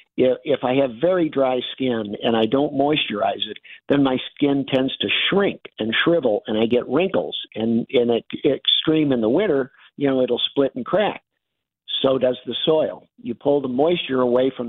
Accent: American